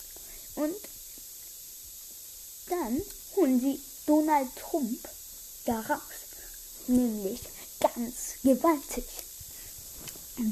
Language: German